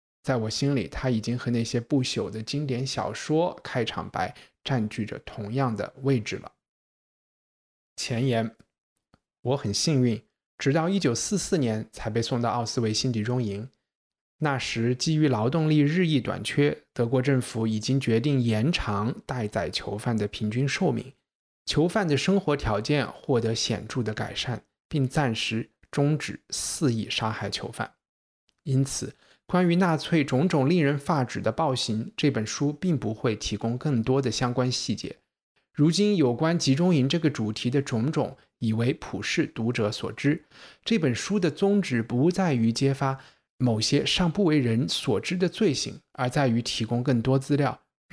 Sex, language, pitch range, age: male, Chinese, 115-145 Hz, 20-39